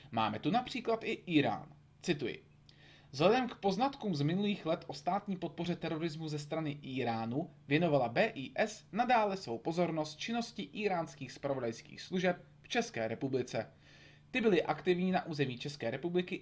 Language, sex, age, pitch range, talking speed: Czech, male, 30-49, 135-180 Hz, 140 wpm